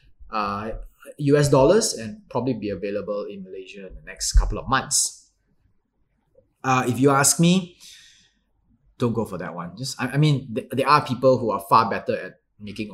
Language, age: English, 20-39